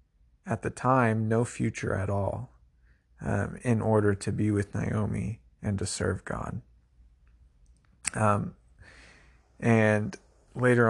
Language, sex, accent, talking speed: English, male, American, 115 wpm